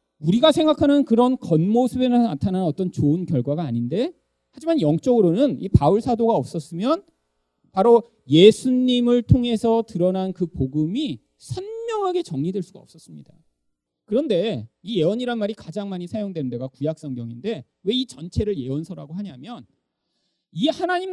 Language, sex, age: Korean, male, 40-59